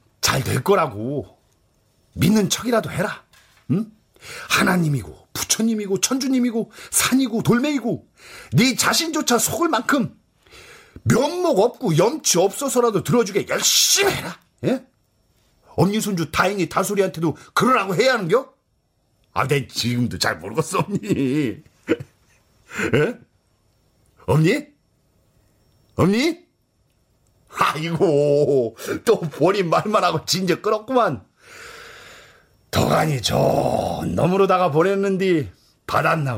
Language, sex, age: Korean, male, 40-59